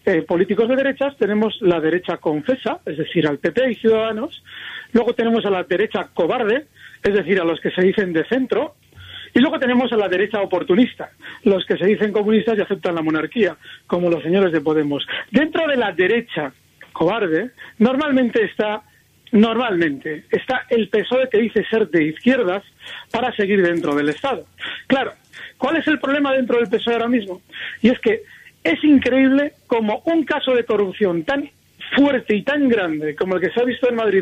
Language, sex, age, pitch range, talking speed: Spanish, male, 40-59, 195-265 Hz, 180 wpm